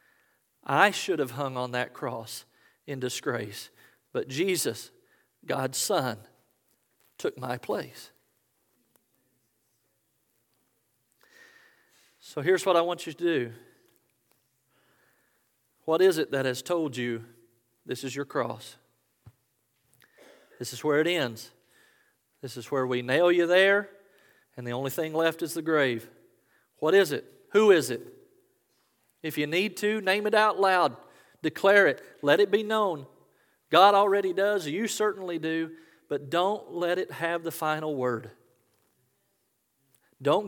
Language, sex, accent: English, male, American